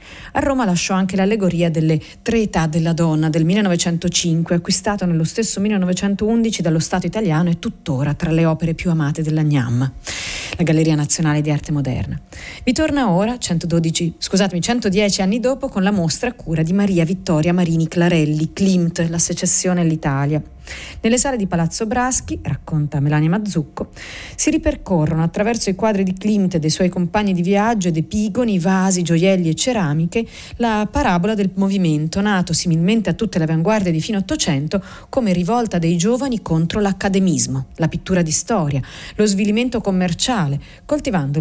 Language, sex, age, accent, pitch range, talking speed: Italian, female, 40-59, native, 160-205 Hz, 160 wpm